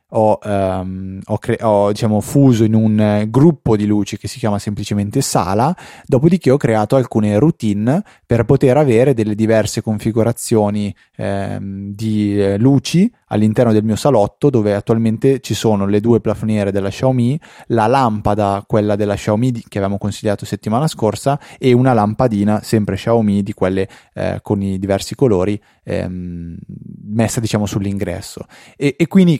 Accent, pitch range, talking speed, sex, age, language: native, 105-120 Hz, 145 wpm, male, 20-39, Italian